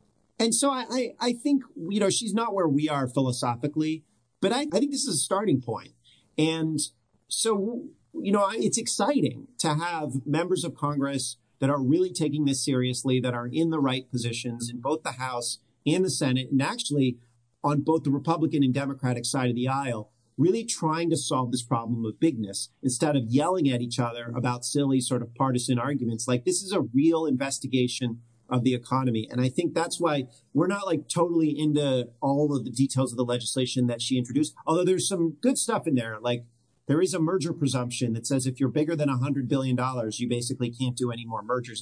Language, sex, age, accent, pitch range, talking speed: English, male, 40-59, American, 120-155 Hz, 205 wpm